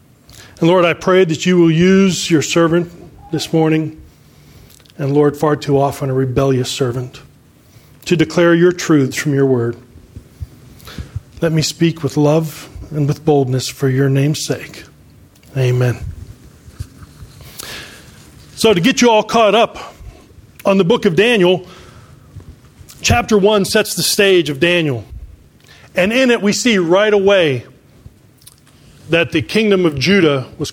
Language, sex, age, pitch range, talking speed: English, male, 40-59, 135-180 Hz, 140 wpm